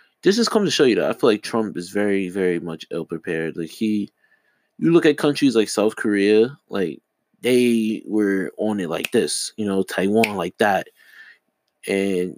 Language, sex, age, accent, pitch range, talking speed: English, male, 20-39, American, 95-135 Hz, 185 wpm